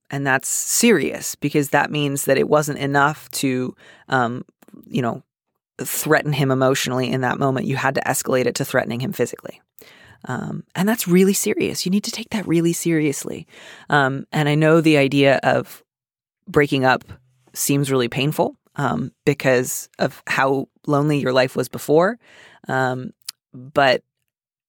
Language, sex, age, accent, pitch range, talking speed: English, female, 30-49, American, 130-155 Hz, 155 wpm